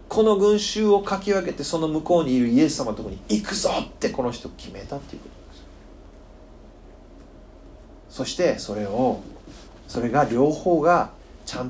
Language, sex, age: Japanese, male, 40-59